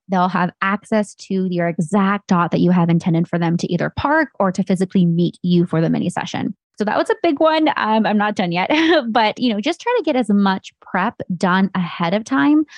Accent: American